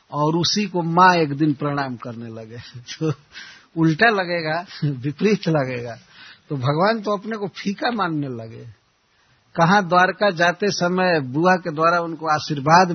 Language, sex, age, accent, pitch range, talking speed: Hindi, male, 60-79, native, 130-170 Hz, 150 wpm